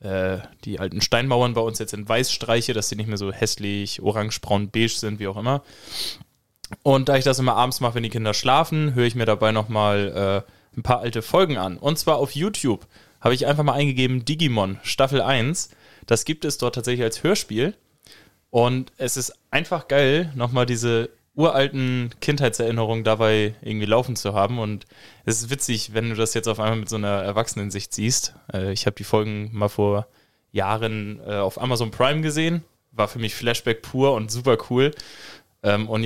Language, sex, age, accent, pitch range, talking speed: German, male, 20-39, German, 110-135 Hz, 190 wpm